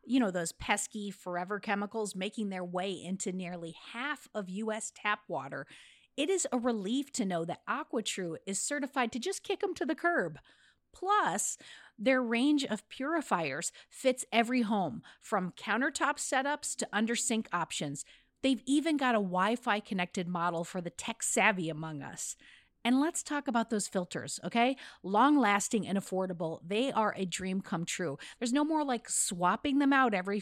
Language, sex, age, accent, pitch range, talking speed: English, female, 40-59, American, 185-255 Hz, 165 wpm